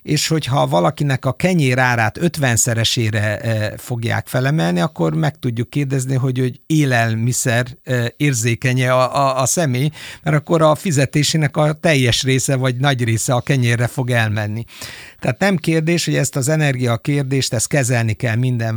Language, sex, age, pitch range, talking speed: Hungarian, male, 60-79, 115-135 Hz, 145 wpm